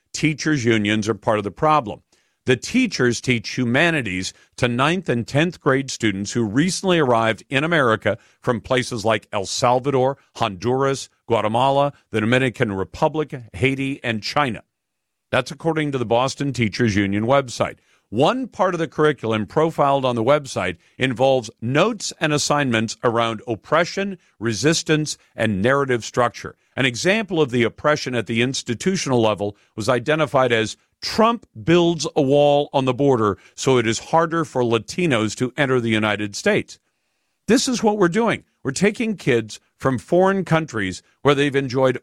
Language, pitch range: English, 115-155 Hz